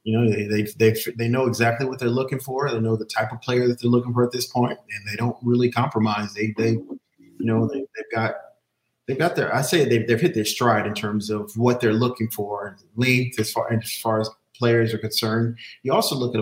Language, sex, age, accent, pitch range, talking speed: English, male, 30-49, American, 110-125 Hz, 250 wpm